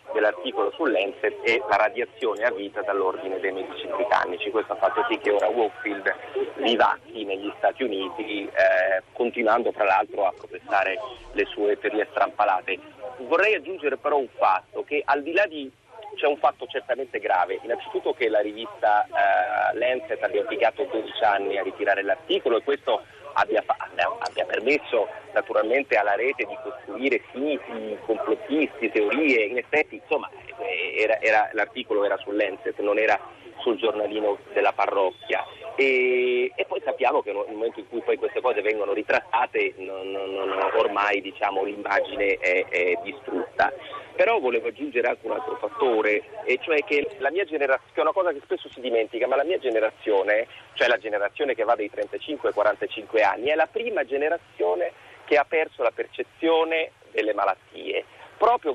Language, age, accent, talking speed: Italian, 30-49, native, 165 wpm